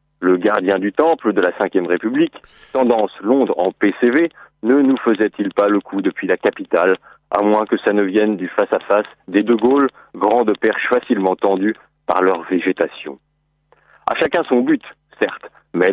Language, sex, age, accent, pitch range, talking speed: French, male, 40-59, French, 95-130 Hz, 170 wpm